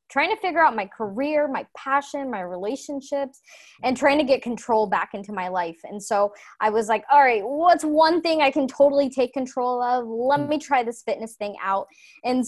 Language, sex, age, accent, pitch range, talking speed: English, female, 20-39, American, 235-290 Hz, 205 wpm